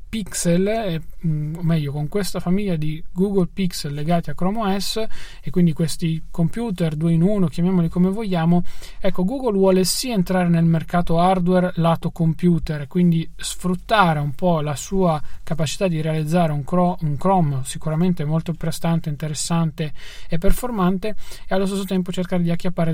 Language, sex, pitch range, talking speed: Italian, male, 160-185 Hz, 150 wpm